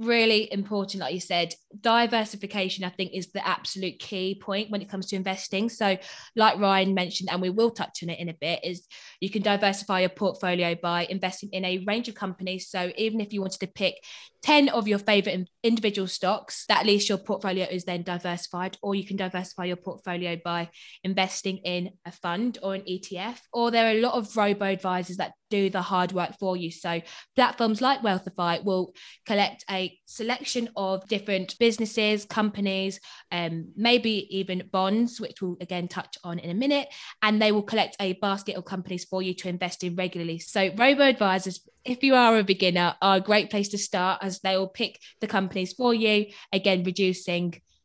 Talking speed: 195 wpm